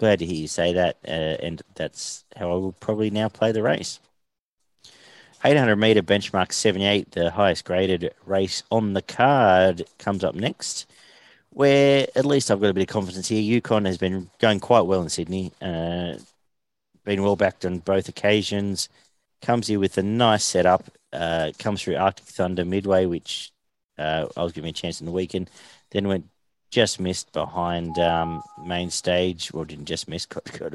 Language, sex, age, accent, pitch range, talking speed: English, male, 40-59, Australian, 85-100 Hz, 180 wpm